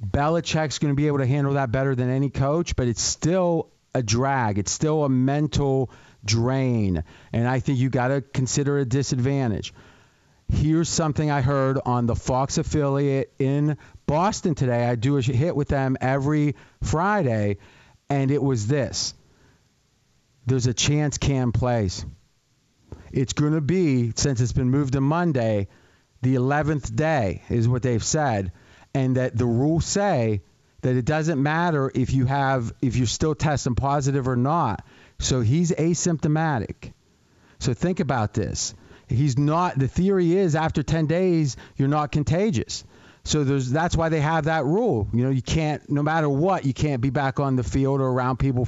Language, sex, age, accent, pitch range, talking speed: English, male, 40-59, American, 125-155 Hz, 170 wpm